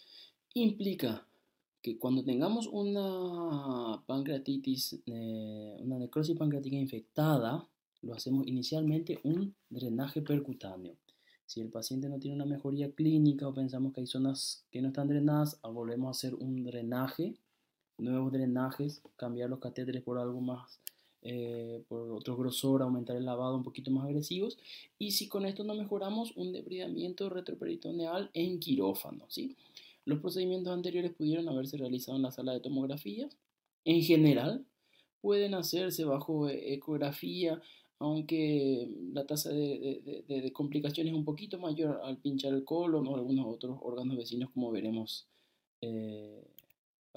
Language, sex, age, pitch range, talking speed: Spanish, male, 20-39, 125-180 Hz, 140 wpm